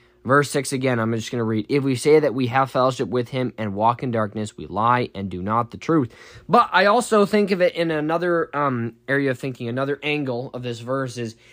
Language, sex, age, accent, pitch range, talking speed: English, male, 10-29, American, 115-145 Hz, 240 wpm